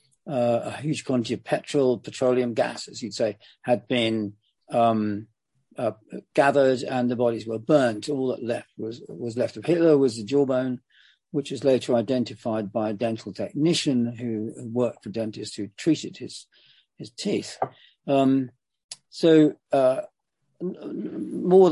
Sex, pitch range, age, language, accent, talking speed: male, 115-145 Hz, 50-69, English, British, 150 wpm